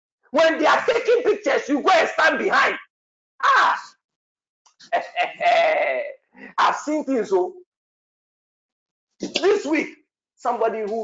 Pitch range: 250-375 Hz